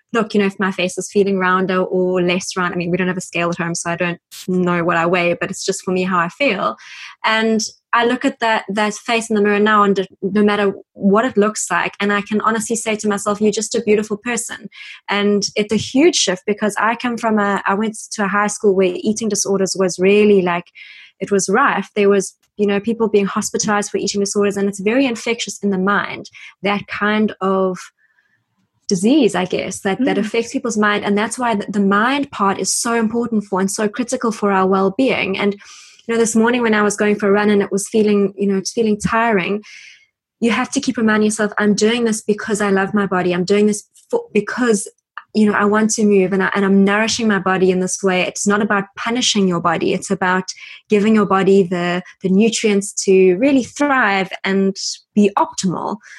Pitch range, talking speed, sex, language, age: 190-215 Hz, 225 wpm, female, English, 20-39